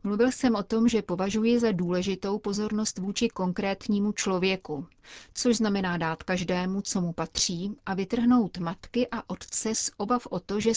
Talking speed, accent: 160 wpm, native